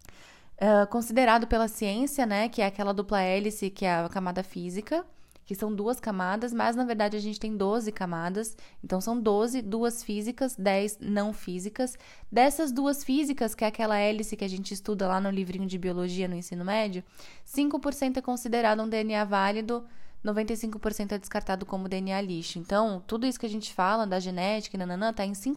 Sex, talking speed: female, 190 wpm